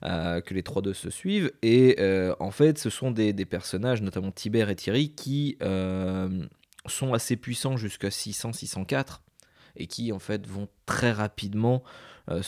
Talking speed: 165 wpm